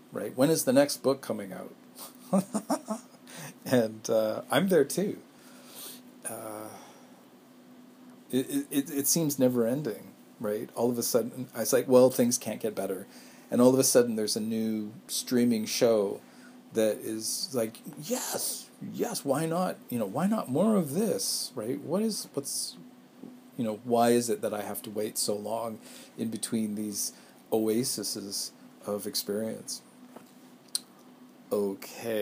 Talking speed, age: 145 wpm, 40-59